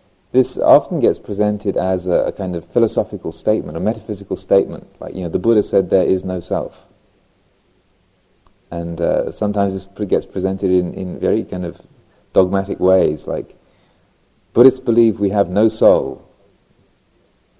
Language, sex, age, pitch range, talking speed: English, male, 40-59, 95-105 Hz, 150 wpm